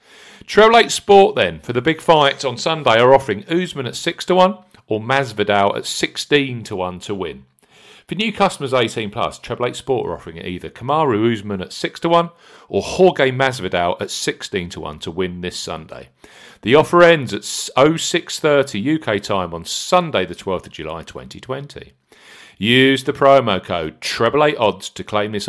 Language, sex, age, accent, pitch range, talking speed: English, male, 40-59, British, 100-155 Hz, 180 wpm